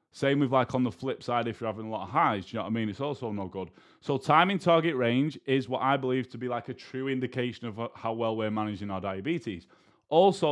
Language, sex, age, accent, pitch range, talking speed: English, male, 20-39, British, 115-150 Hz, 260 wpm